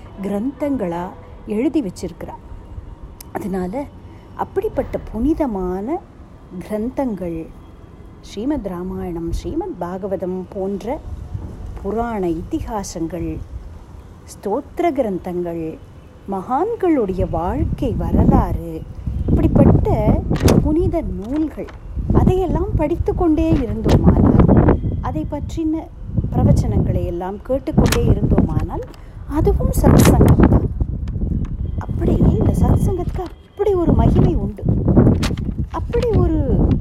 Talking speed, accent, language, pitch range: 65 wpm, native, Tamil, 185-310 Hz